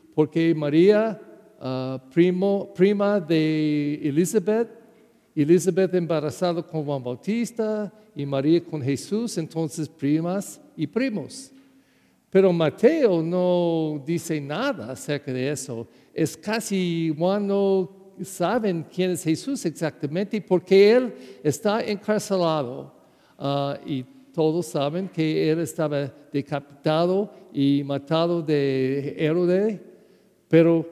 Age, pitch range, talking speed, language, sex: 50-69, 150-210 Hz, 105 wpm, English, male